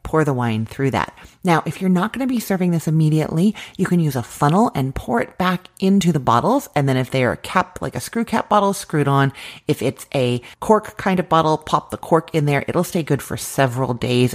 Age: 30-49